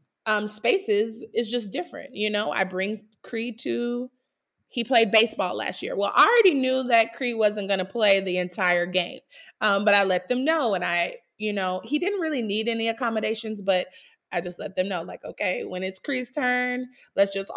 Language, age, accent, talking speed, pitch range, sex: English, 20-39, American, 200 wpm, 190-240 Hz, female